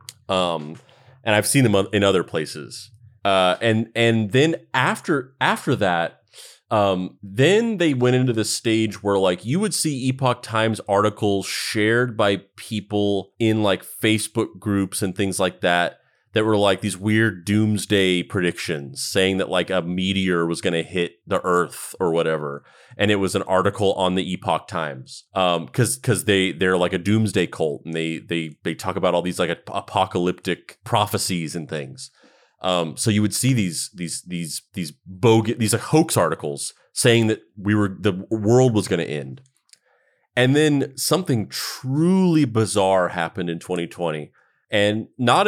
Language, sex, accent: English, male, American